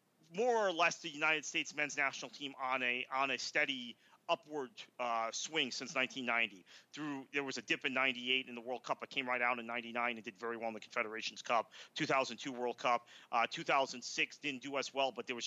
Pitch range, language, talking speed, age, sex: 120-155 Hz, English, 215 wpm, 40-59, male